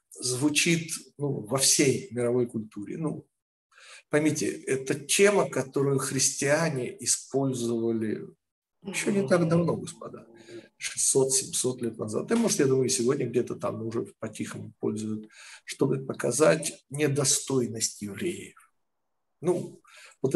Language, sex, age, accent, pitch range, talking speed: Russian, male, 50-69, native, 125-160 Hz, 110 wpm